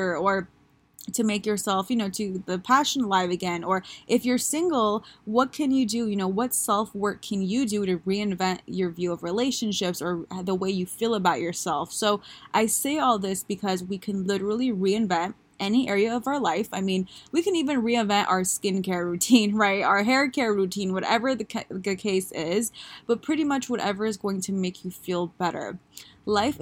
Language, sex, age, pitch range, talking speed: English, female, 20-39, 185-235 Hz, 195 wpm